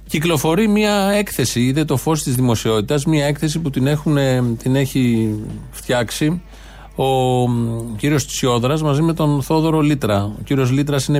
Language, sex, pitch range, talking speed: Greek, male, 120-150 Hz, 150 wpm